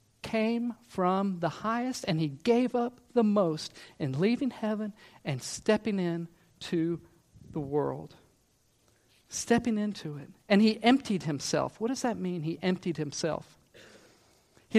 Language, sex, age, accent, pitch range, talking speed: English, male, 50-69, American, 145-225 Hz, 140 wpm